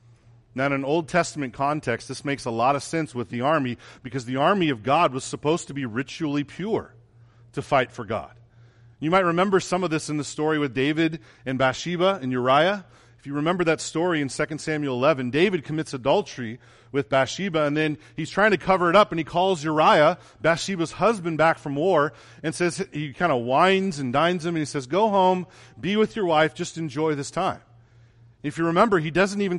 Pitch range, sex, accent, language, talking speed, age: 125-180 Hz, male, American, English, 210 wpm, 40-59